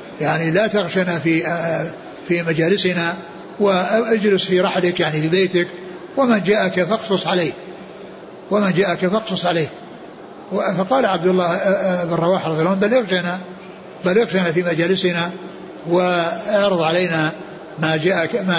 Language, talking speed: Arabic, 115 wpm